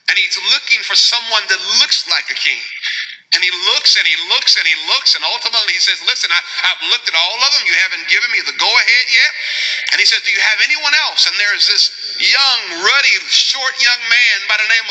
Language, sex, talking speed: English, male, 235 wpm